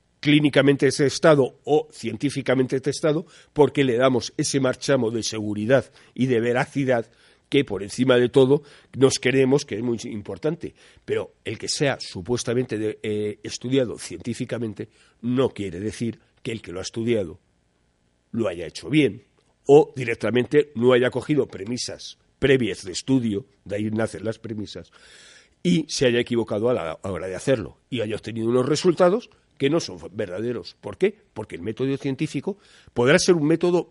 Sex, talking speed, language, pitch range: male, 160 wpm, Spanish, 115-160 Hz